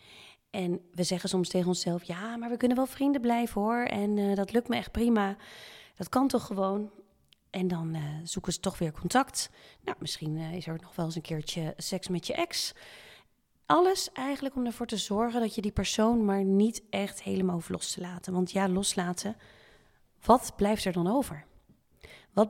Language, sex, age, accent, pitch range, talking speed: Dutch, female, 30-49, Dutch, 180-220 Hz, 195 wpm